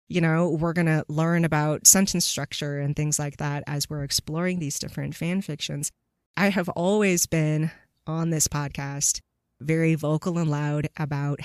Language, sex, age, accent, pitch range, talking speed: English, female, 30-49, American, 145-175 Hz, 170 wpm